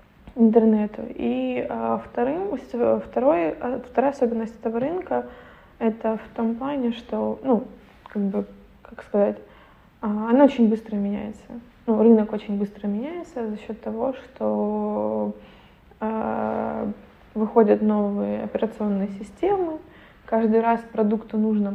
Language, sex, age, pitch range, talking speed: Ukrainian, female, 20-39, 195-235 Hz, 120 wpm